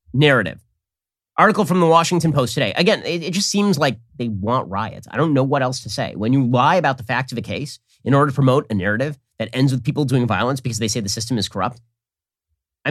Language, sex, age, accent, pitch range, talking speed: English, male, 30-49, American, 120-195 Hz, 240 wpm